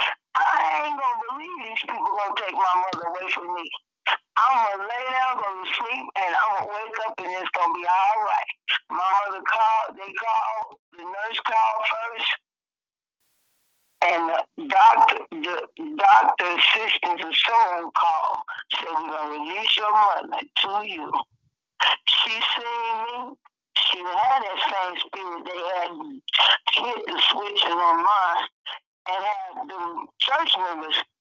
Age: 50-69